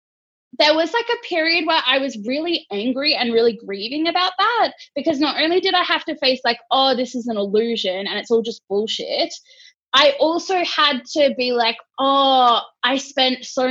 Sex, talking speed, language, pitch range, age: female, 195 wpm, English, 230-300 Hz, 20-39